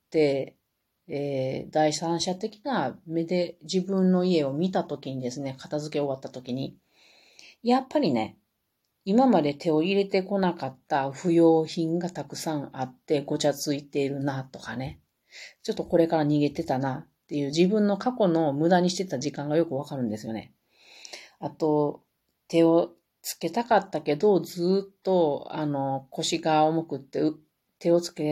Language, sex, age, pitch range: Japanese, female, 40-59, 140-185 Hz